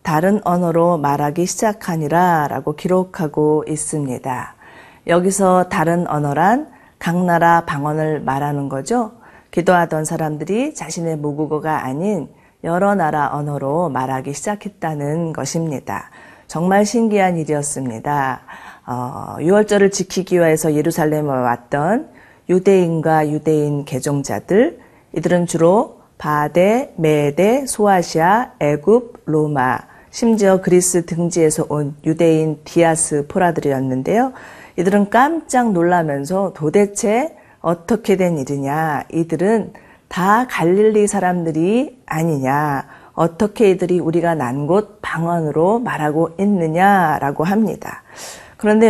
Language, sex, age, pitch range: Korean, female, 40-59, 150-195 Hz